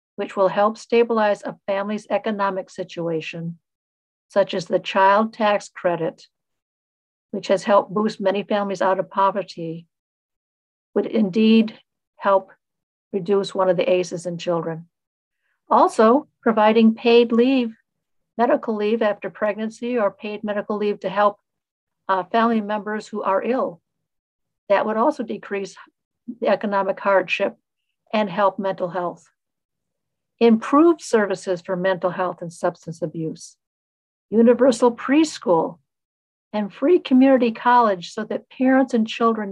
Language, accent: English, American